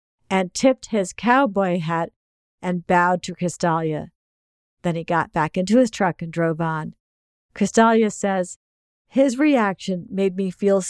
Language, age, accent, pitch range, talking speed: English, 50-69, American, 170-205 Hz, 145 wpm